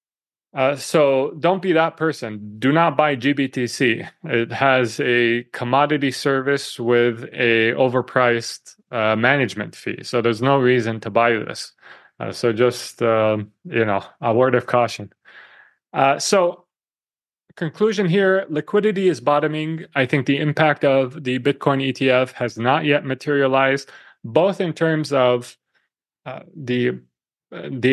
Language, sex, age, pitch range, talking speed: English, male, 30-49, 120-150 Hz, 140 wpm